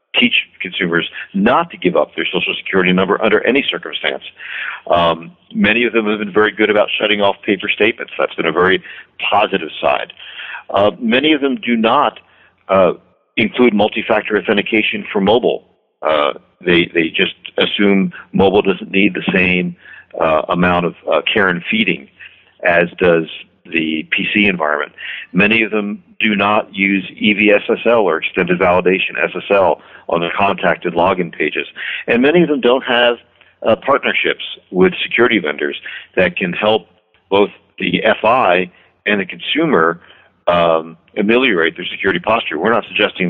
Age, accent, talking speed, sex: 50-69, American, 150 wpm, male